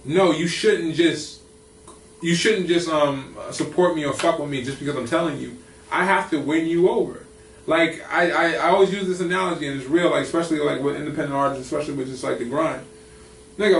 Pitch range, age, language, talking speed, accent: 140-175 Hz, 20-39, English, 215 wpm, American